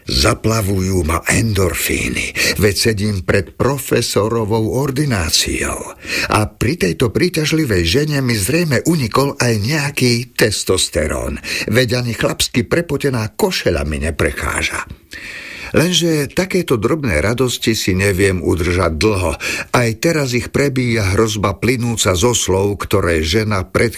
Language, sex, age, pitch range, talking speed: Slovak, male, 50-69, 95-145 Hz, 115 wpm